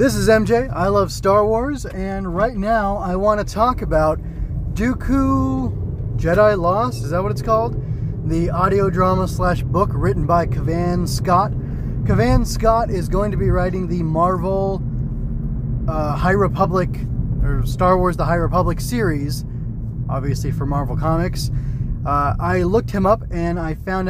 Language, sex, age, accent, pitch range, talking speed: English, male, 20-39, American, 130-180 Hz, 155 wpm